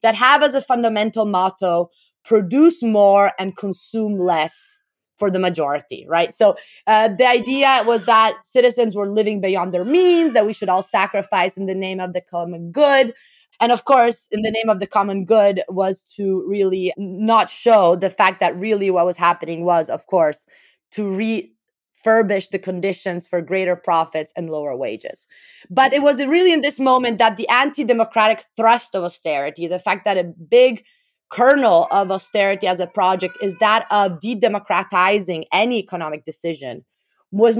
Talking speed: 170 wpm